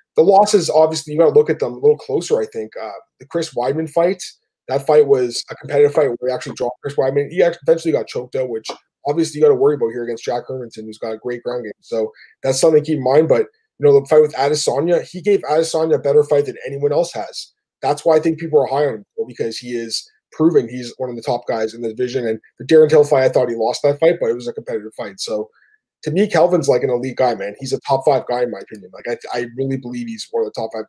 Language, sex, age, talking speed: English, male, 20-39, 270 wpm